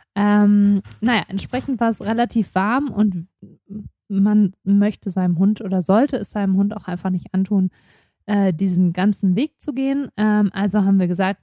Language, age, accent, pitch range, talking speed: German, 20-39, German, 195-240 Hz, 170 wpm